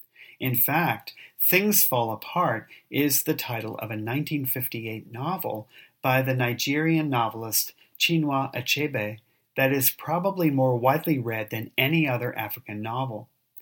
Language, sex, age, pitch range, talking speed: English, male, 40-59, 115-145 Hz, 130 wpm